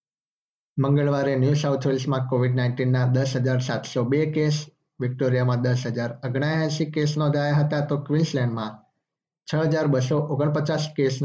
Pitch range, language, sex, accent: 130-150 Hz, Gujarati, male, native